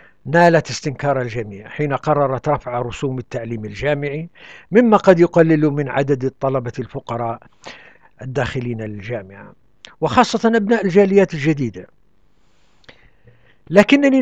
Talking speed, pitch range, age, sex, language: 95 wpm, 125-170 Hz, 60-79, male, Arabic